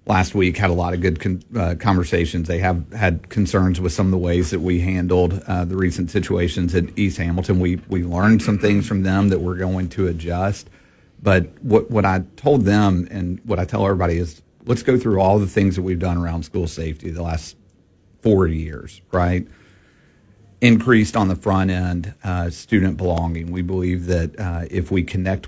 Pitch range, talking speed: 90-100 Hz, 200 wpm